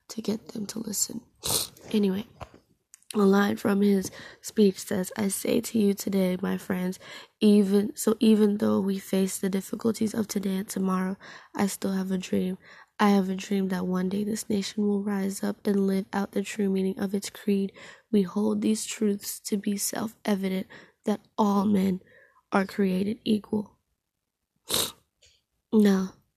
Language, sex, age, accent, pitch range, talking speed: English, female, 10-29, American, 185-210 Hz, 160 wpm